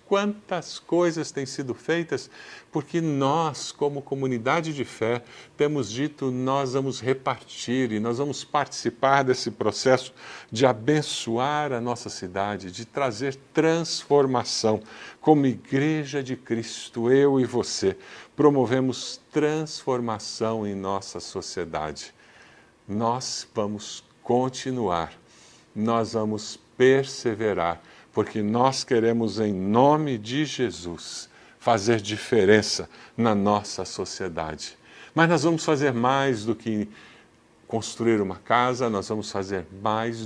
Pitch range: 105-135 Hz